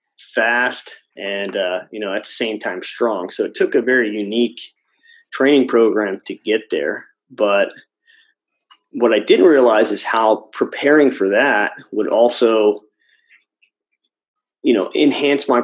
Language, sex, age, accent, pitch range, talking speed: English, male, 30-49, American, 115-150 Hz, 140 wpm